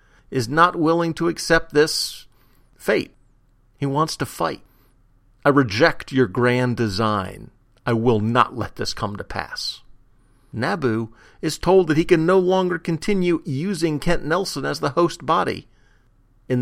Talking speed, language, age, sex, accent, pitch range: 150 wpm, English, 50-69, male, American, 115-150 Hz